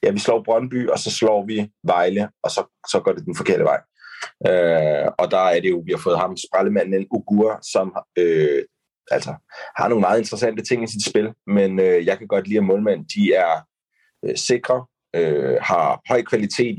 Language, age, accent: Danish, 30-49, native